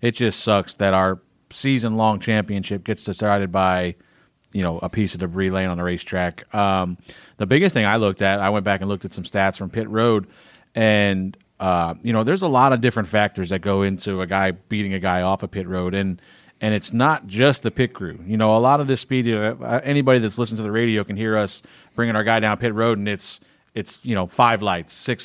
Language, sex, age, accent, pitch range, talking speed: English, male, 40-59, American, 100-125 Hz, 235 wpm